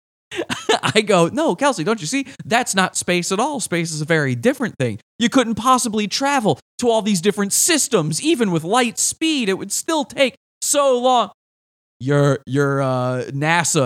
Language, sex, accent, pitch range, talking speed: English, male, American, 125-185 Hz, 175 wpm